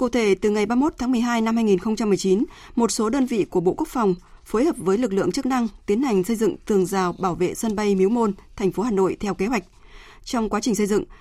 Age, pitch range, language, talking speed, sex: 20-39, 190-230 Hz, Vietnamese, 255 wpm, female